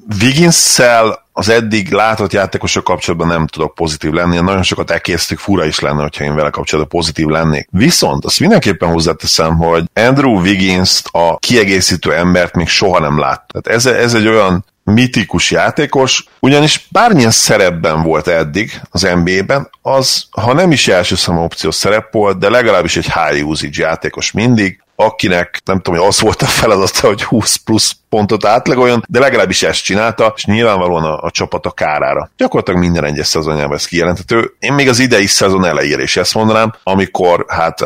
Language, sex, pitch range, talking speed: Hungarian, male, 85-110 Hz, 170 wpm